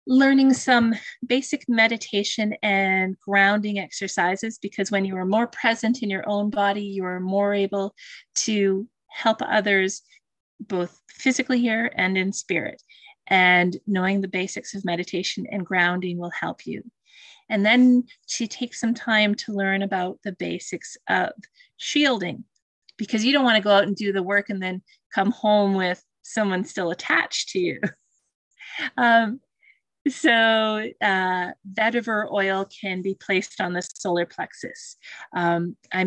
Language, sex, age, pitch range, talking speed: English, female, 30-49, 185-225 Hz, 145 wpm